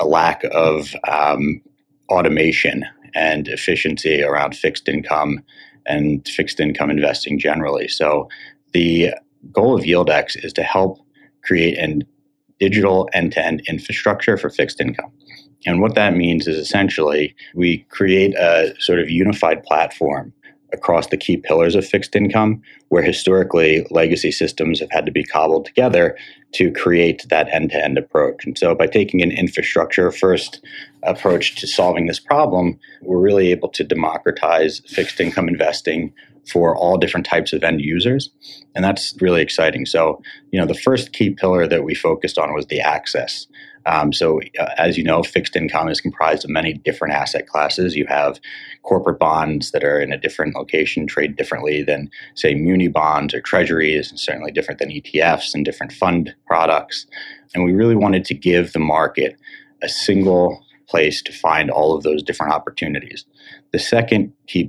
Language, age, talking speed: English, 30-49, 160 wpm